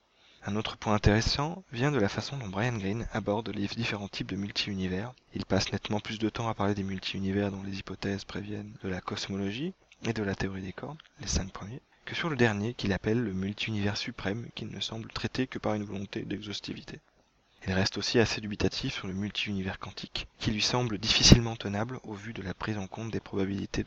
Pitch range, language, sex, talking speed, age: 95-115 Hz, French, male, 210 wpm, 20-39